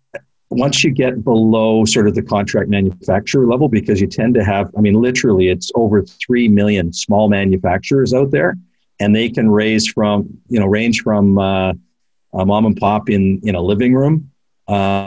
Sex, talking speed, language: male, 185 wpm, English